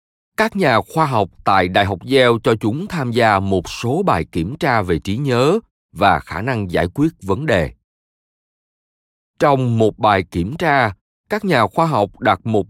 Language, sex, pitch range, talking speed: Vietnamese, male, 90-140 Hz, 180 wpm